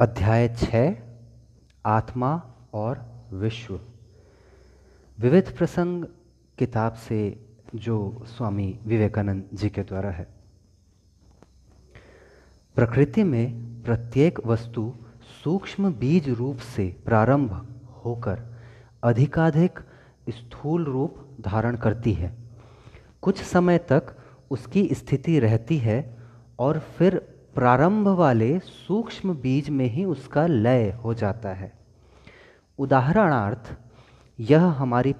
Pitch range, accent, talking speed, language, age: 110-140 Hz, native, 95 wpm, Hindi, 30-49